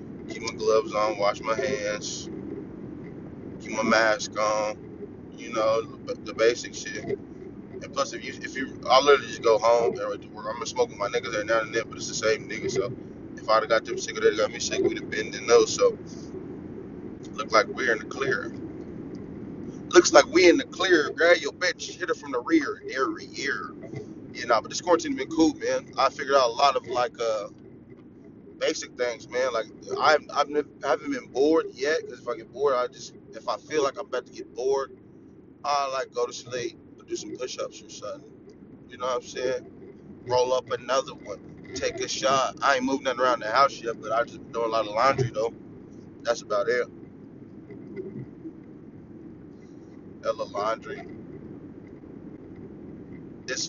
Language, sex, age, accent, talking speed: English, male, 20-39, American, 190 wpm